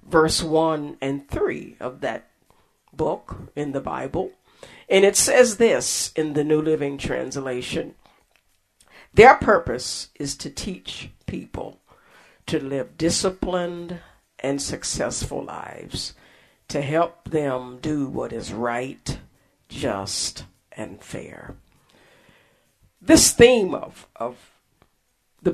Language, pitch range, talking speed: English, 135-185 Hz, 110 wpm